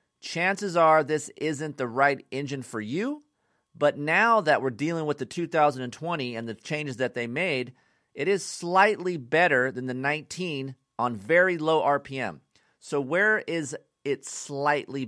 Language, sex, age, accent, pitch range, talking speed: English, male, 40-59, American, 125-165 Hz, 155 wpm